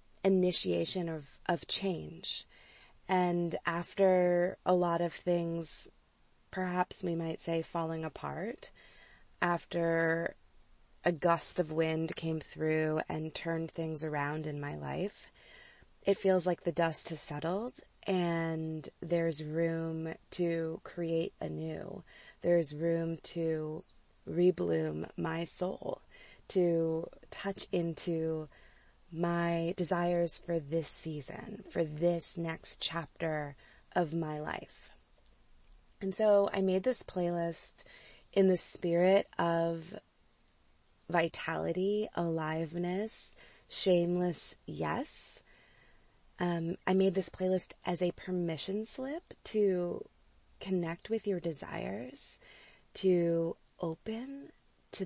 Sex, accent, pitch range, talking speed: female, American, 160-185 Hz, 105 wpm